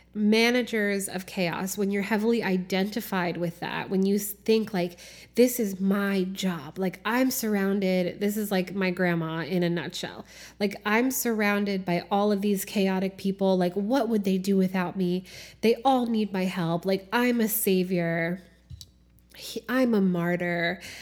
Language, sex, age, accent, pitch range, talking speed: English, female, 20-39, American, 180-220 Hz, 160 wpm